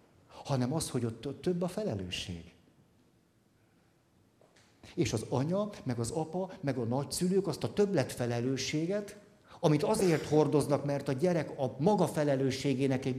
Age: 50-69